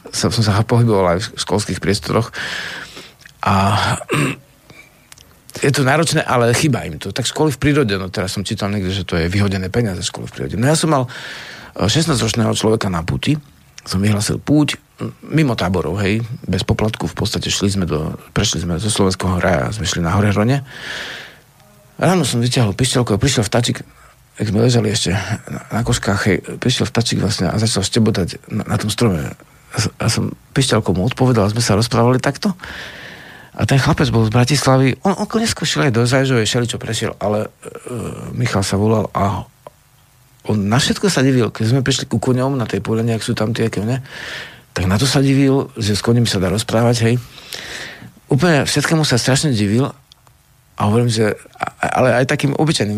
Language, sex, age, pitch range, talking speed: Slovak, male, 50-69, 100-130 Hz, 180 wpm